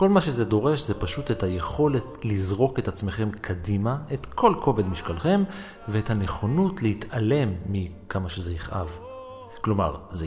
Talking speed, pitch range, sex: 140 wpm, 95-135 Hz, male